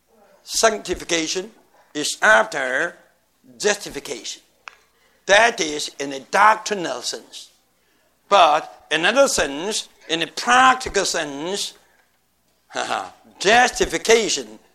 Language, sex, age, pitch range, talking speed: Filipino, male, 60-79, 160-230 Hz, 75 wpm